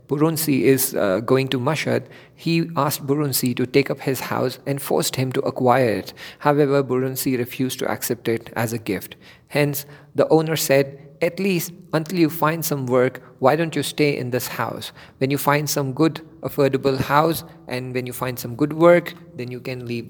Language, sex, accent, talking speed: English, male, Indian, 195 wpm